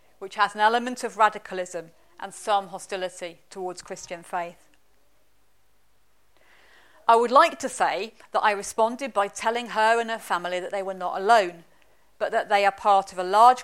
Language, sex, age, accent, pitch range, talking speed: English, female, 40-59, British, 180-225 Hz, 170 wpm